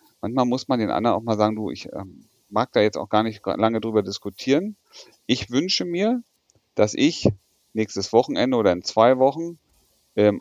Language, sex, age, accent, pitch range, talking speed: German, male, 40-59, German, 100-125 Hz, 185 wpm